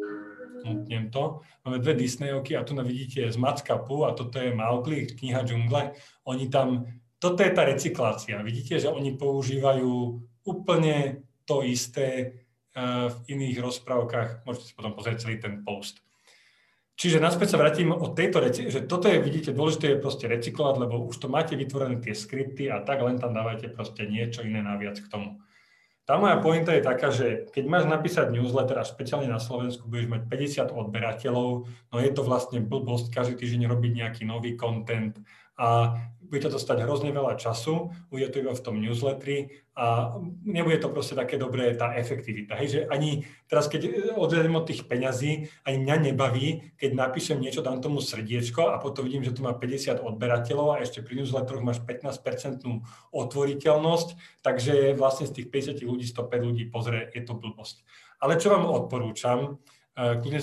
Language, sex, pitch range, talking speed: Slovak, male, 120-140 Hz, 175 wpm